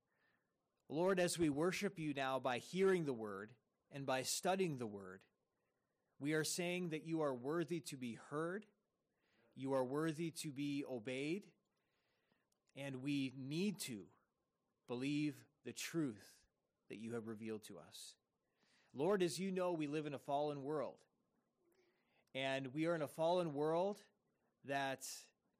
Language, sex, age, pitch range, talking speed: English, male, 30-49, 130-175 Hz, 145 wpm